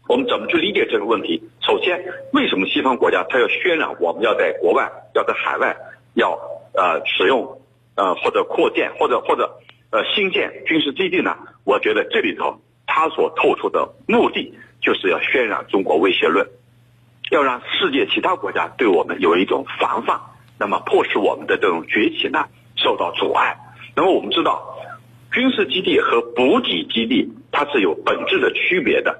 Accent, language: native, Chinese